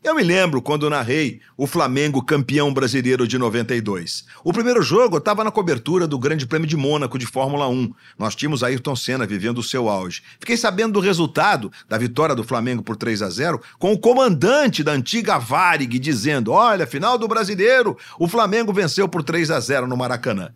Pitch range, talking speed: 125-195 Hz, 180 wpm